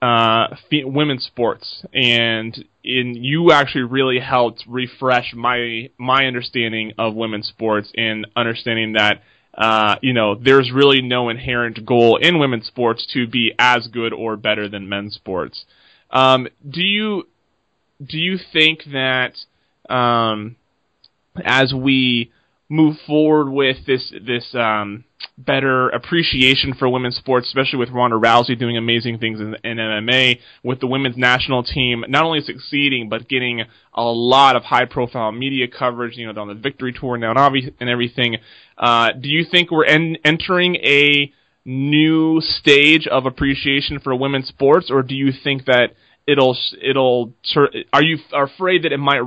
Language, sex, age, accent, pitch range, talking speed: English, male, 20-39, American, 115-140 Hz, 155 wpm